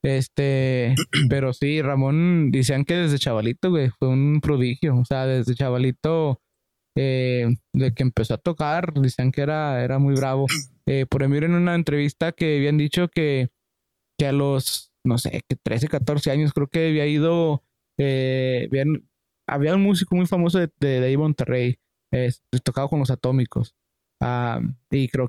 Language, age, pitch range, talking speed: English, 20-39, 135-170 Hz, 165 wpm